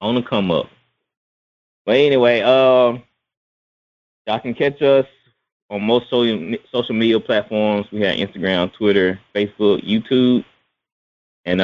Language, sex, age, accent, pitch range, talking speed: English, male, 20-39, American, 95-120 Hz, 125 wpm